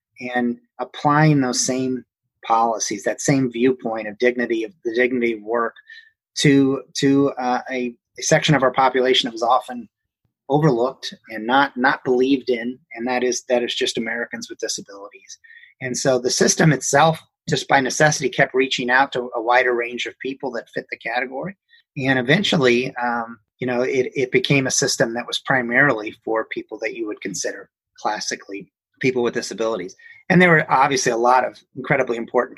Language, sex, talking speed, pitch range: English, male, 175 wpm, 120-155 Hz